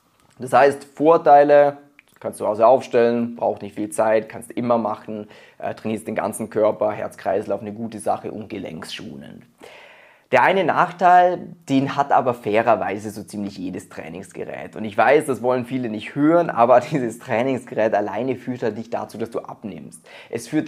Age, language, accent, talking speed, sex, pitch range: 20-39, German, German, 170 wpm, male, 115-155 Hz